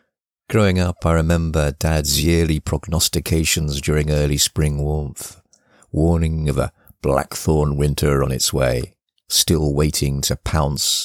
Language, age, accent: English, 50-69, British